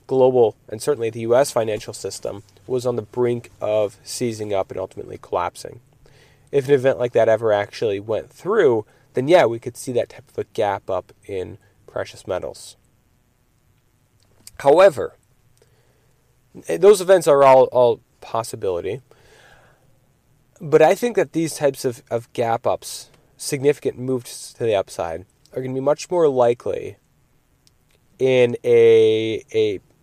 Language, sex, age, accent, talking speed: English, male, 30-49, American, 145 wpm